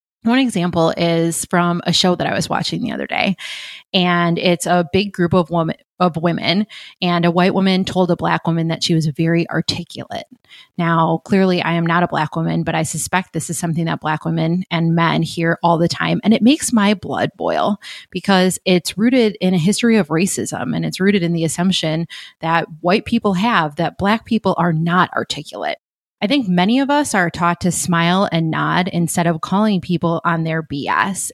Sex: female